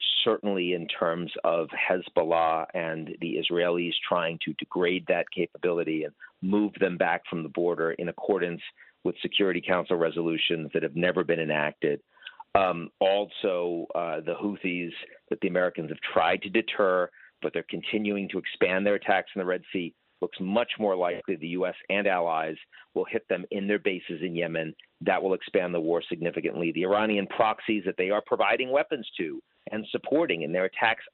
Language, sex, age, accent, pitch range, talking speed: English, male, 50-69, American, 85-105 Hz, 175 wpm